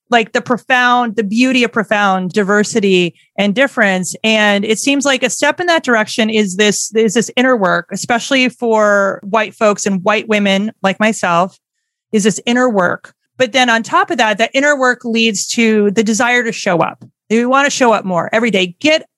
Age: 30-49